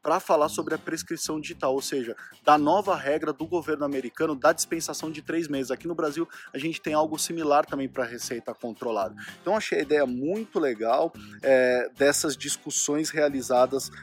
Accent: Brazilian